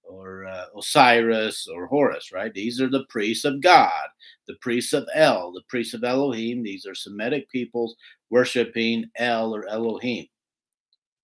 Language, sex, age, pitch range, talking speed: English, male, 50-69, 115-150 Hz, 150 wpm